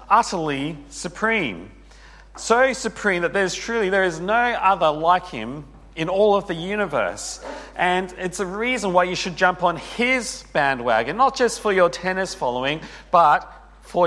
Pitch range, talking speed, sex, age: 150-190 Hz, 160 wpm, male, 40-59